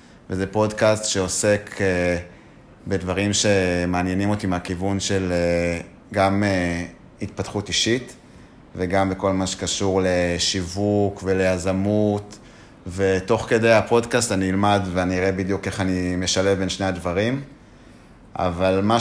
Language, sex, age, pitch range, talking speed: Hebrew, male, 30-49, 90-105 Hz, 105 wpm